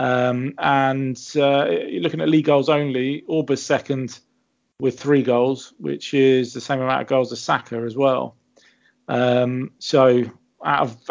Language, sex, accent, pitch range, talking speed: English, male, British, 125-150 Hz, 150 wpm